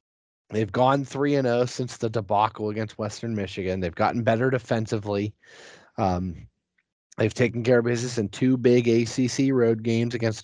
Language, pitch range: English, 90-120 Hz